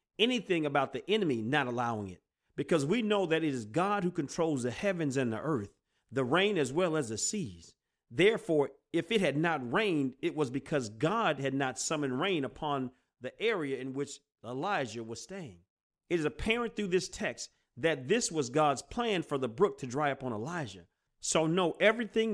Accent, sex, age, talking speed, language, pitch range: American, male, 40-59, 190 wpm, English, 130-190 Hz